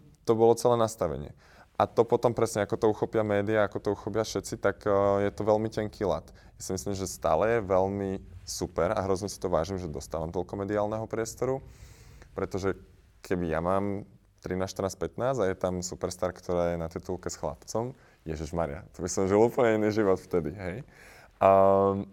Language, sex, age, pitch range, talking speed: Slovak, male, 20-39, 95-110 Hz, 185 wpm